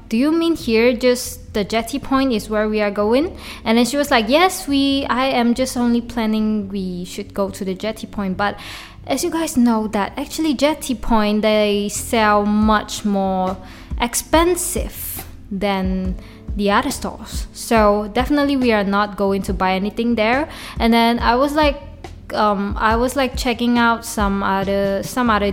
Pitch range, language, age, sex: 210-255 Hz, Chinese, 20-39, female